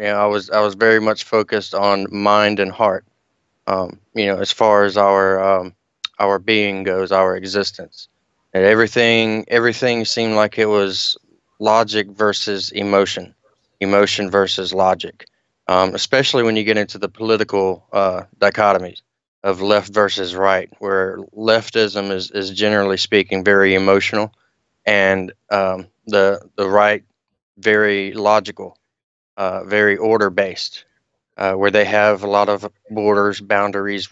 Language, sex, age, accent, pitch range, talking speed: English, male, 20-39, American, 95-110 Hz, 140 wpm